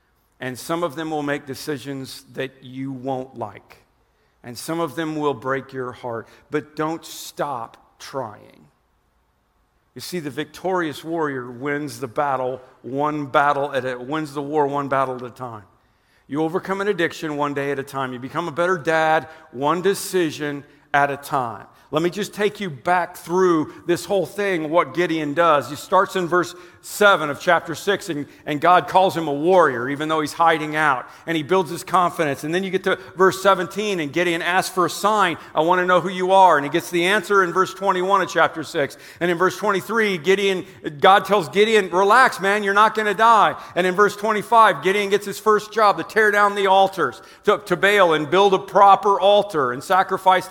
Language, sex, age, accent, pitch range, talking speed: English, male, 50-69, American, 145-195 Hz, 205 wpm